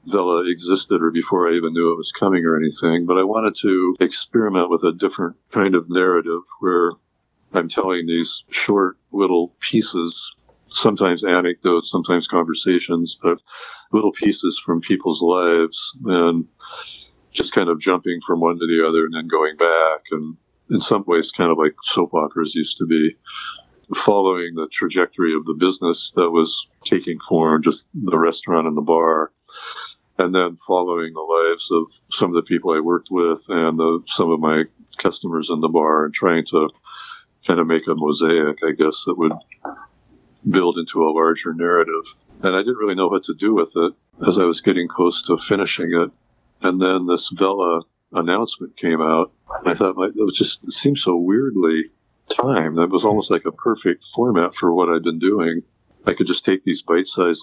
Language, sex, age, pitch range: English, male, 50-69, 80-90 Hz